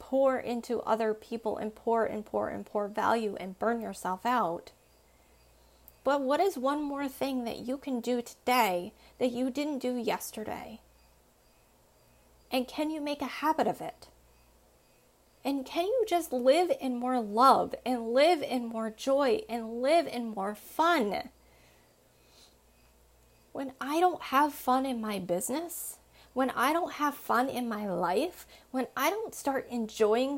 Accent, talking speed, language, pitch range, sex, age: American, 155 wpm, English, 215-275 Hz, female, 30-49